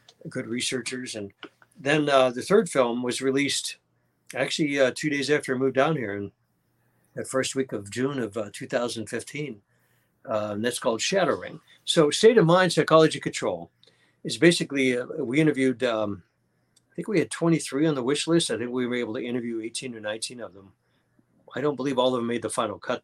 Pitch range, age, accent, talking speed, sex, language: 115-150 Hz, 60-79, American, 200 wpm, male, English